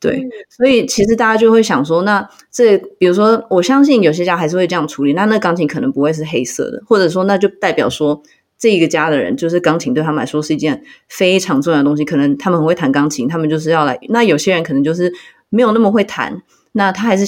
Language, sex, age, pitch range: Chinese, female, 20-39, 155-240 Hz